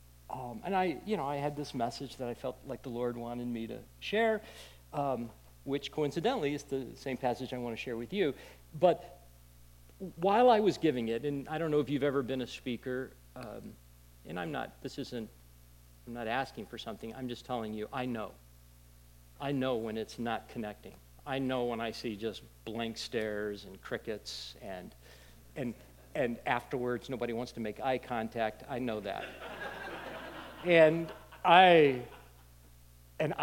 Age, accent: 50-69, American